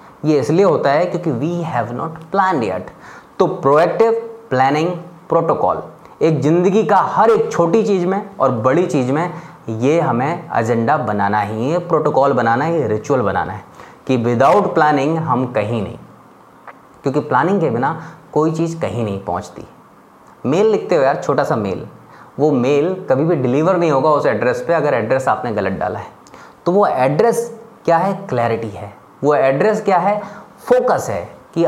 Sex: male